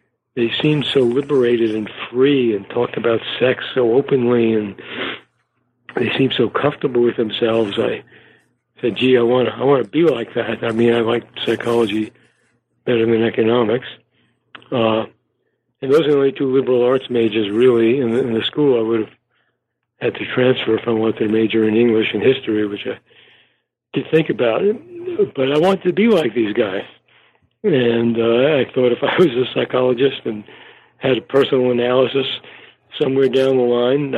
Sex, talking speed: male, 175 wpm